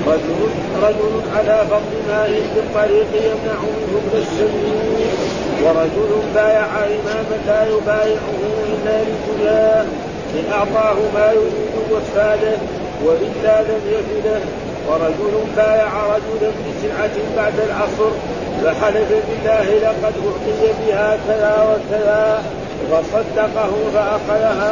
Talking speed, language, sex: 95 wpm, Arabic, male